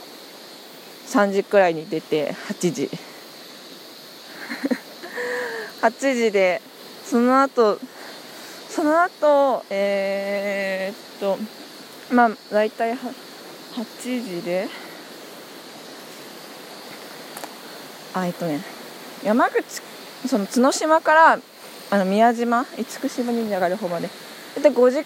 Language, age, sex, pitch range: Japanese, 20-39, female, 200-285 Hz